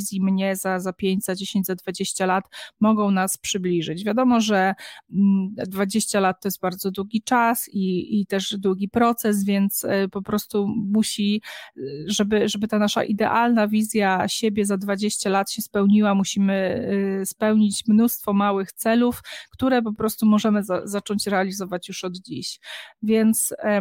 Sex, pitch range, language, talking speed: female, 195-215 Hz, Polish, 145 wpm